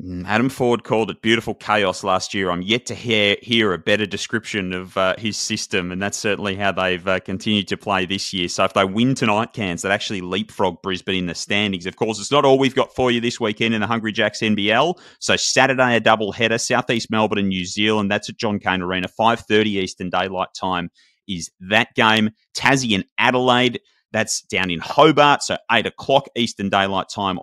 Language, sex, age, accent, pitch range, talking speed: English, male, 30-49, Australian, 95-120 Hz, 205 wpm